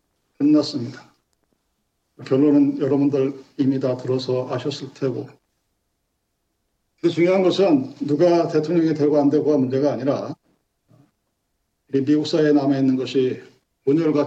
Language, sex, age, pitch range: Korean, male, 50-69, 140-170 Hz